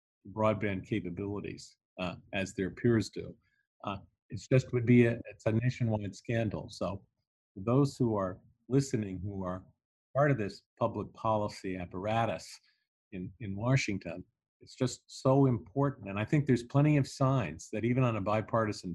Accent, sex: American, male